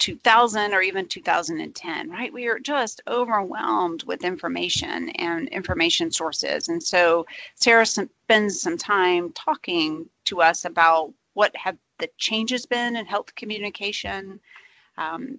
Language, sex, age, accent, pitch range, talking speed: English, female, 30-49, American, 175-245 Hz, 130 wpm